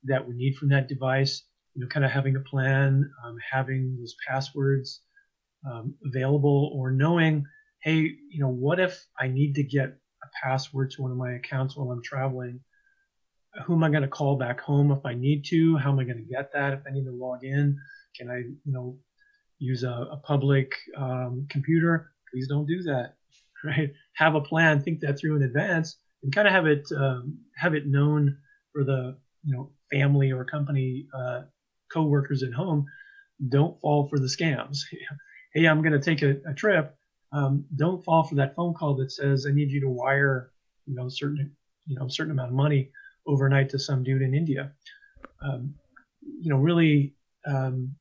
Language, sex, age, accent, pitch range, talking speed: English, male, 30-49, American, 135-155 Hz, 195 wpm